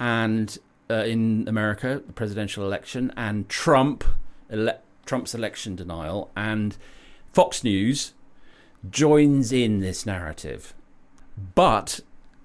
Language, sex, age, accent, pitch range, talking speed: English, male, 50-69, British, 95-120 Hz, 95 wpm